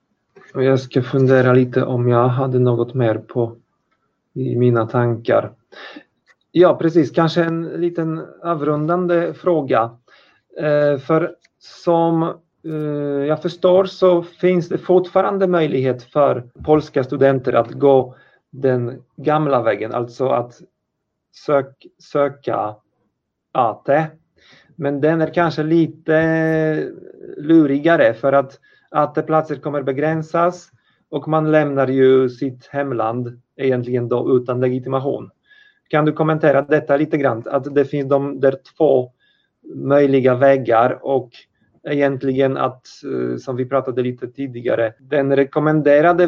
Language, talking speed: Polish, 115 wpm